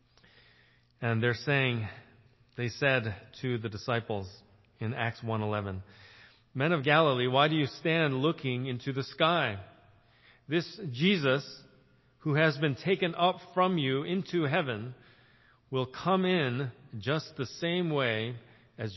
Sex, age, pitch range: male, 40-59, 110-145 Hz